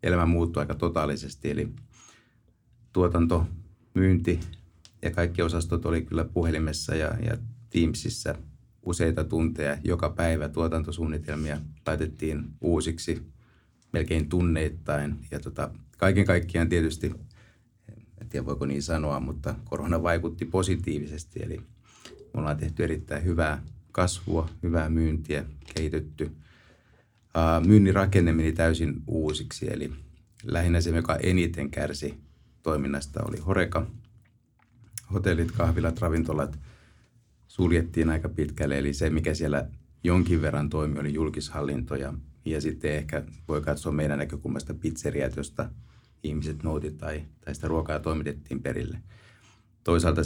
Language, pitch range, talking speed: Finnish, 75-95 Hz, 110 wpm